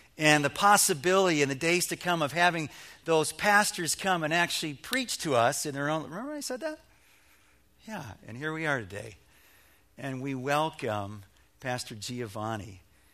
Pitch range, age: 120-165 Hz, 50-69